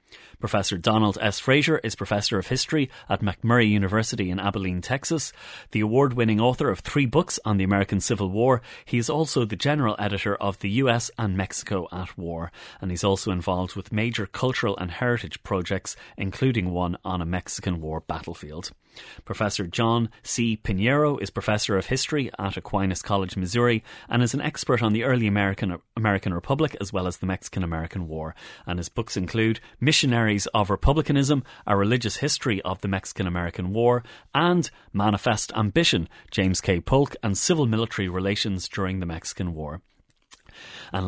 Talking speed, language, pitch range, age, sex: 165 wpm, English, 95-120 Hz, 30-49, male